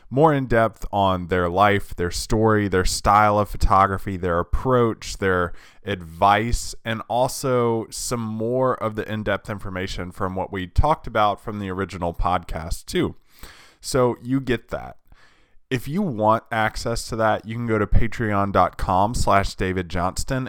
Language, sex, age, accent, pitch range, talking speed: English, male, 20-39, American, 95-115 Hz, 145 wpm